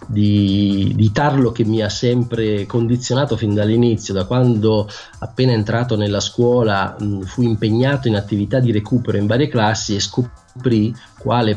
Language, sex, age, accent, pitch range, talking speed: Italian, male, 30-49, native, 105-130 Hz, 145 wpm